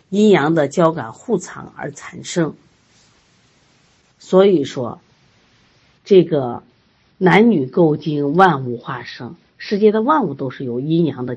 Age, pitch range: 50-69, 155-245 Hz